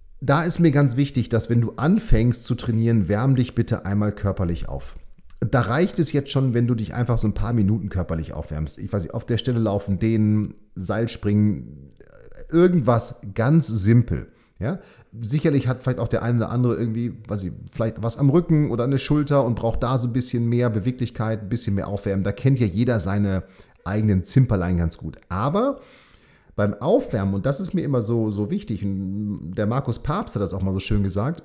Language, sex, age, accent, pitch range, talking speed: German, male, 40-59, German, 95-125 Hz, 200 wpm